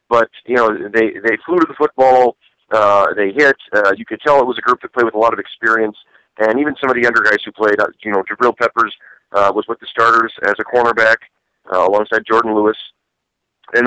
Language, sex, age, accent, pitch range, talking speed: English, male, 40-59, American, 100-115 Hz, 235 wpm